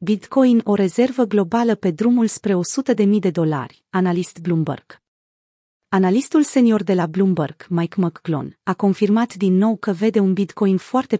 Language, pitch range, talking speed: Romanian, 180-225 Hz, 155 wpm